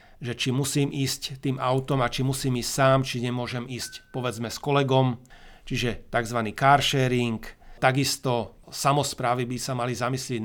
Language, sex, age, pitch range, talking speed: Slovak, male, 40-59, 120-135 Hz, 155 wpm